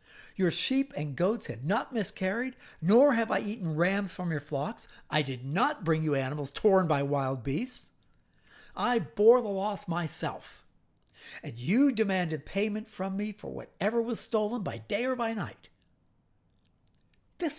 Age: 60-79